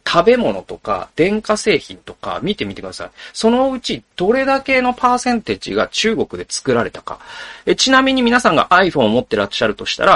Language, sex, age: Japanese, male, 40-59